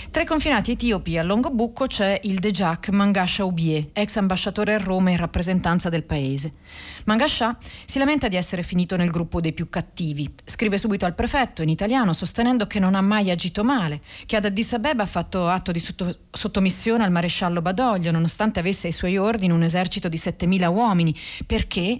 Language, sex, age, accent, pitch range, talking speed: Italian, female, 40-59, native, 170-220 Hz, 180 wpm